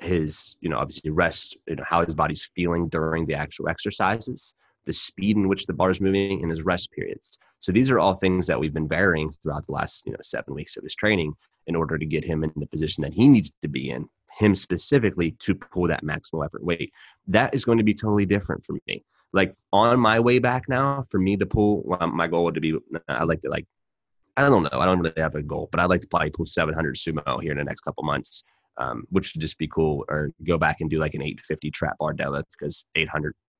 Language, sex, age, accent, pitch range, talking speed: English, male, 20-39, American, 80-100 Hz, 250 wpm